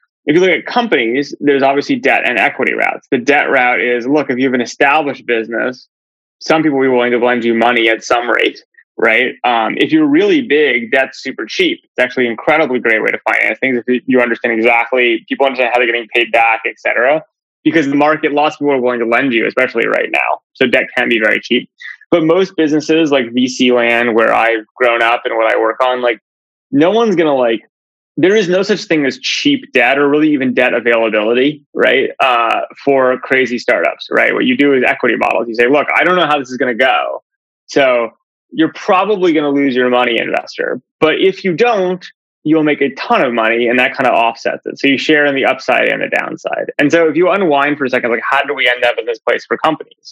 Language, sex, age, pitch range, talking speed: English, male, 20-39, 120-165 Hz, 235 wpm